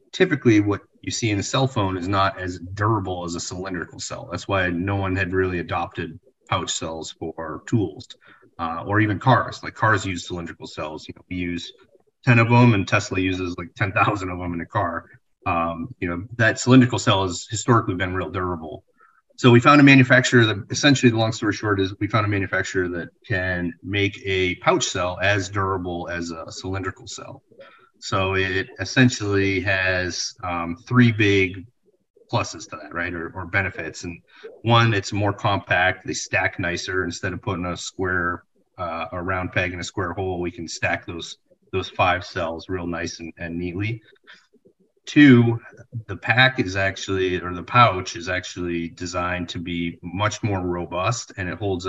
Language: English